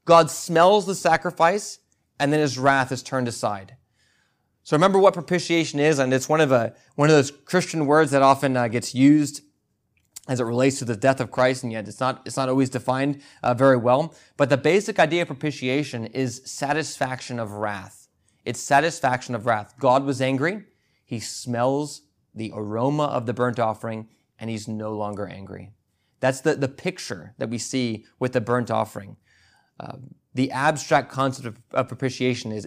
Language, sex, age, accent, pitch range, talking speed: English, male, 20-39, American, 115-145 Hz, 180 wpm